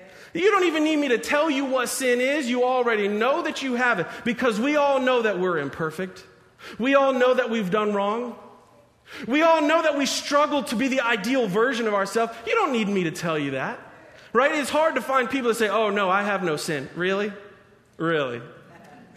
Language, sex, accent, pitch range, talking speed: English, male, American, 185-255 Hz, 215 wpm